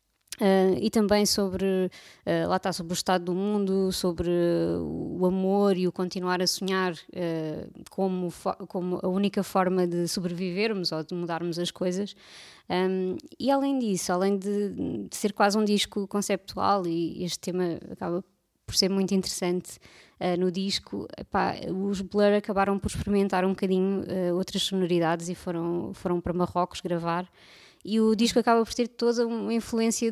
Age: 20-39